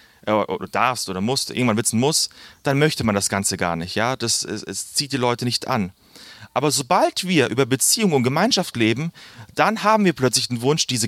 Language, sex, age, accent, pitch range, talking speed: German, male, 30-49, German, 110-150 Hz, 195 wpm